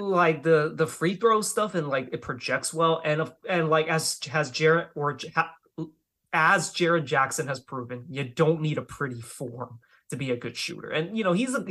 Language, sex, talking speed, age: English, male, 205 wpm, 20-39